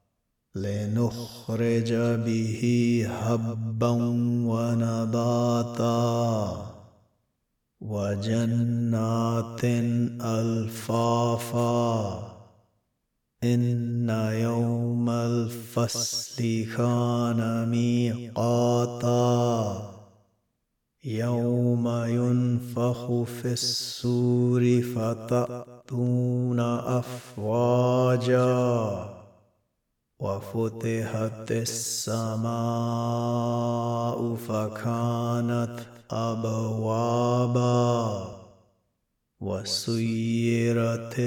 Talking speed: 30 wpm